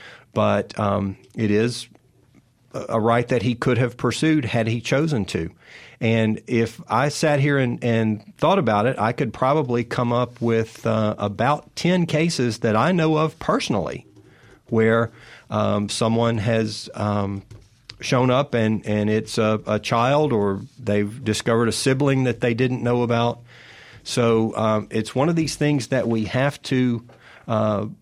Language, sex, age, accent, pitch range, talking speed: English, male, 40-59, American, 115-135 Hz, 160 wpm